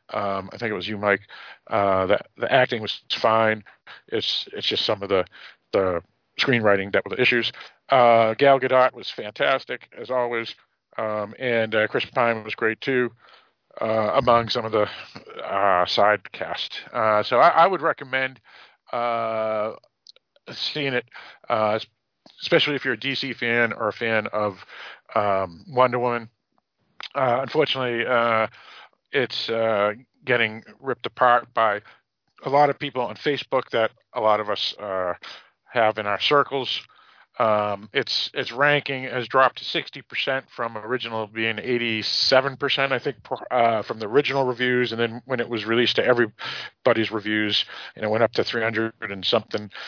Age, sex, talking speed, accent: 50-69, male, 160 wpm, American